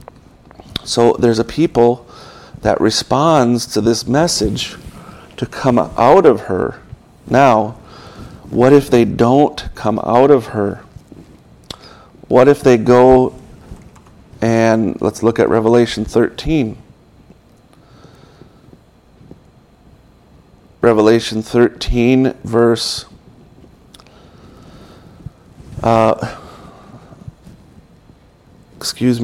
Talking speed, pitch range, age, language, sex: 80 wpm, 110-125 Hz, 40-59, English, male